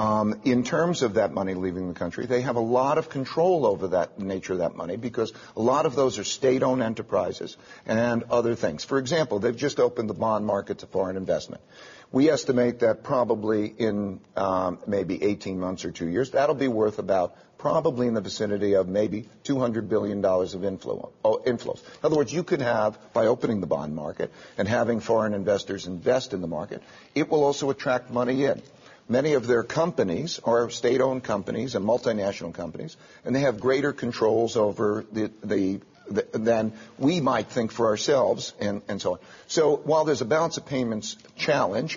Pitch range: 100-130 Hz